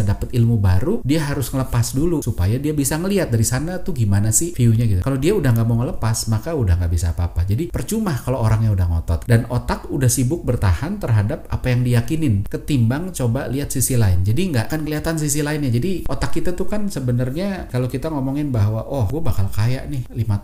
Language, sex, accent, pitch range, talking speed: Indonesian, male, native, 105-135 Hz, 210 wpm